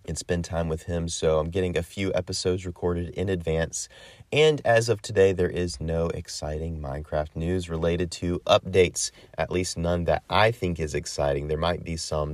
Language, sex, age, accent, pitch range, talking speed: English, male, 30-49, American, 80-100 Hz, 190 wpm